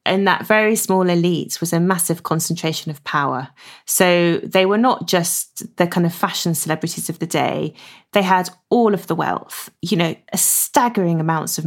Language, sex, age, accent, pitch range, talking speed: English, female, 30-49, British, 165-195 Hz, 185 wpm